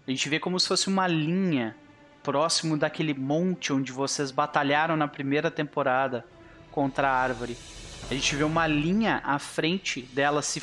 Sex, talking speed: male, 165 wpm